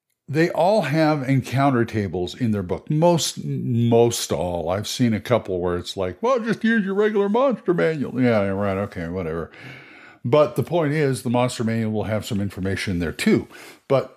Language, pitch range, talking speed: English, 110-150 Hz, 185 wpm